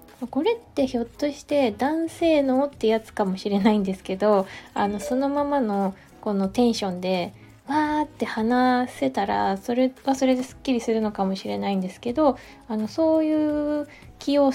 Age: 20-39